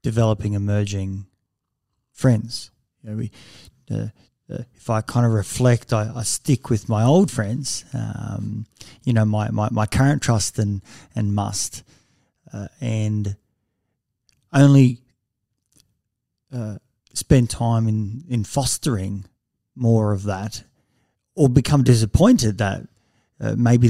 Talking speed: 115 wpm